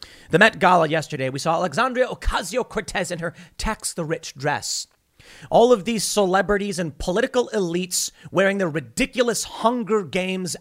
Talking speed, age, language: 145 wpm, 30-49, English